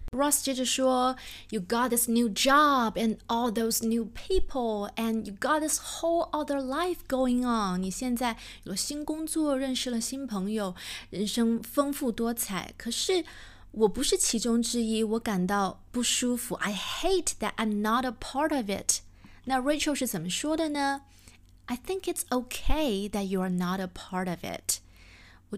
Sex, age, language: female, 30-49, Chinese